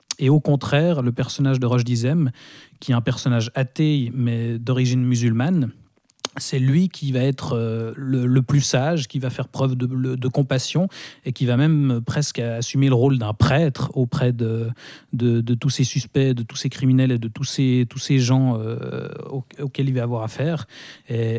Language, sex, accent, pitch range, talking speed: French, male, French, 120-140 Hz, 190 wpm